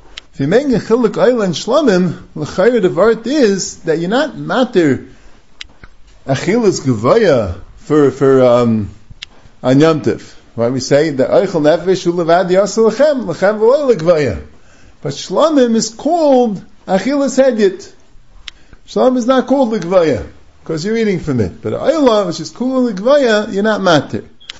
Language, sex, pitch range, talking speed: English, male, 145-230 Hz, 145 wpm